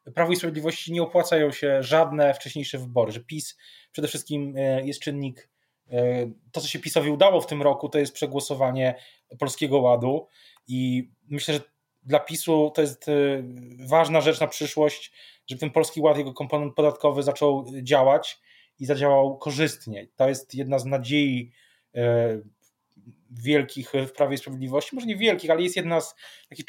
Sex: male